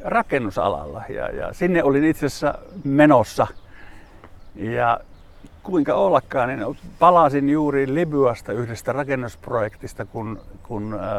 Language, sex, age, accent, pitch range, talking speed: Finnish, male, 60-79, native, 100-135 Hz, 95 wpm